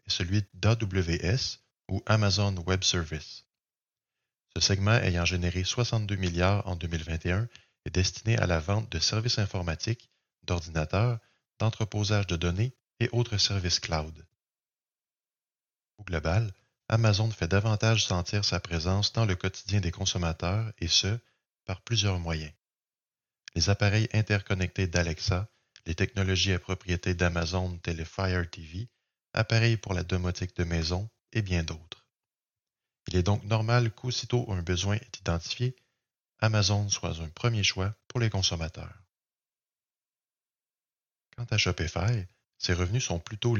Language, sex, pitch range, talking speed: French, male, 90-110 Hz, 130 wpm